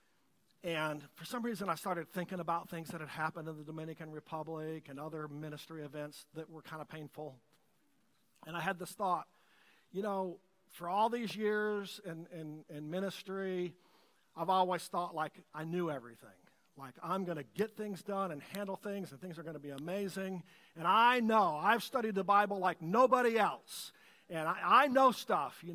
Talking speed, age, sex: 185 wpm, 50-69, male